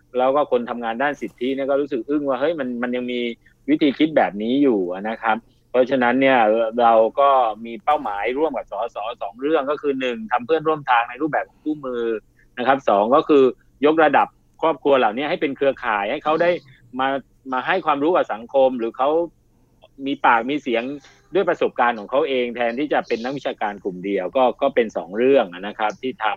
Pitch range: 120-145 Hz